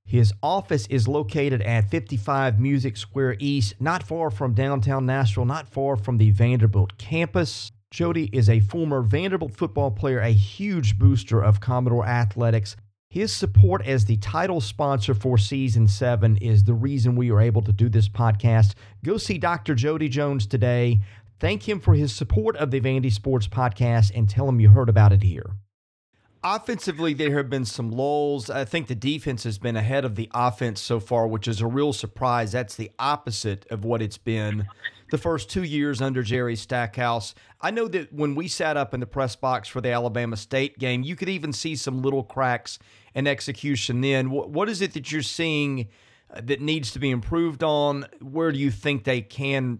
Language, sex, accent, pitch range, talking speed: English, male, American, 110-140 Hz, 190 wpm